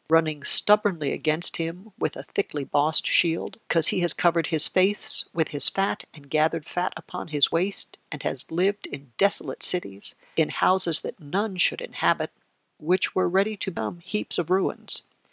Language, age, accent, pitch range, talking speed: English, 60-79, American, 155-195 Hz, 170 wpm